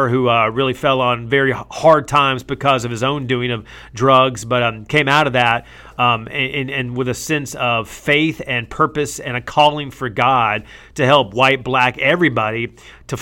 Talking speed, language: 190 wpm, English